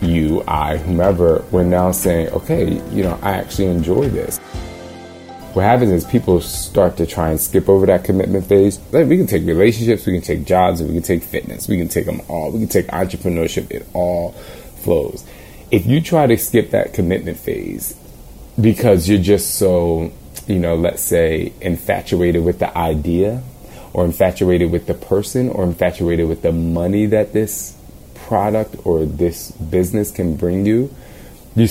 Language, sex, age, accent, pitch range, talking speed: English, male, 30-49, American, 85-100 Hz, 170 wpm